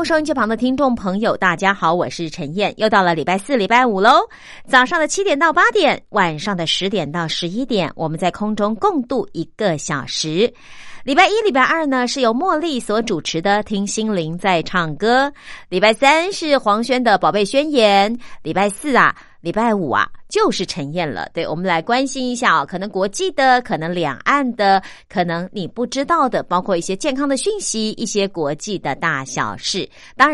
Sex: female